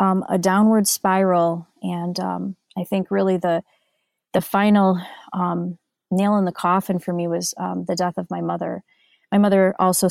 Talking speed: 170 wpm